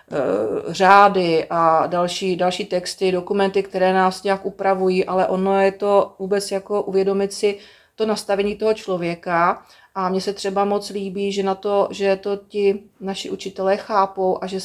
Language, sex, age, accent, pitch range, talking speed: Czech, female, 30-49, native, 195-215 Hz, 155 wpm